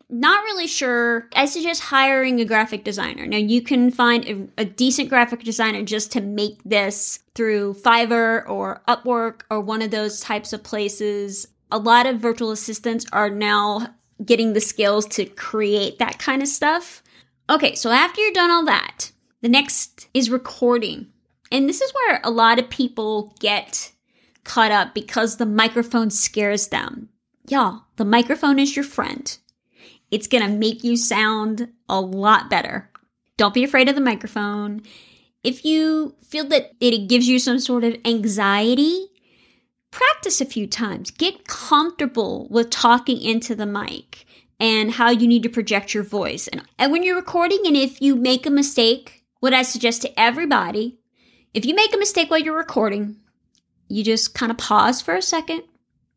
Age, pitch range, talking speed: 20-39, 215-270 Hz, 170 wpm